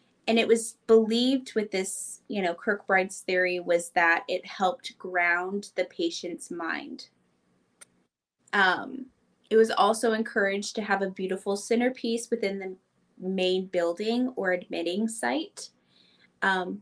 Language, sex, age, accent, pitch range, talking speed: English, female, 20-39, American, 180-225 Hz, 130 wpm